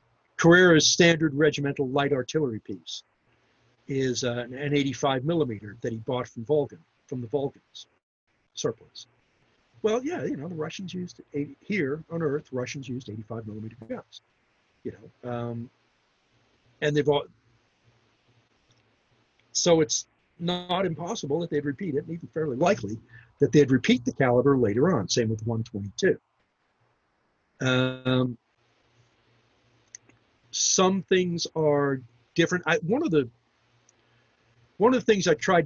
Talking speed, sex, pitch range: 135 wpm, male, 120-155 Hz